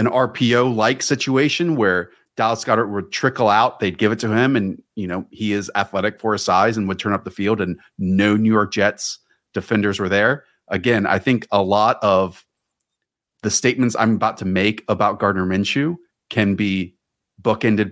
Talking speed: 190 wpm